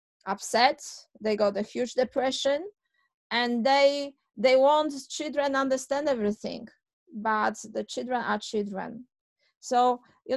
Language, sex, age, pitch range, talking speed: English, female, 30-49, 215-265 Hz, 120 wpm